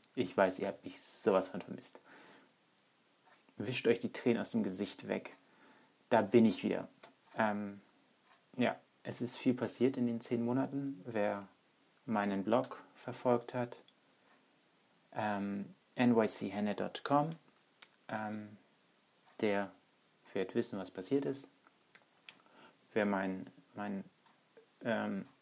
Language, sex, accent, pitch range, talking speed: German, male, German, 100-125 Hz, 115 wpm